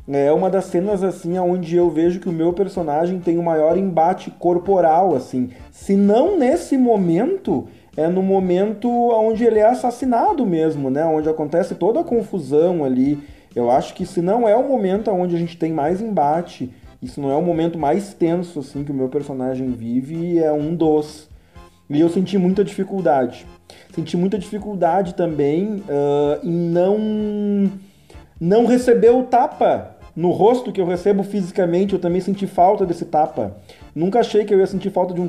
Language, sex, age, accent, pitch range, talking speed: Portuguese, male, 30-49, Brazilian, 155-195 Hz, 175 wpm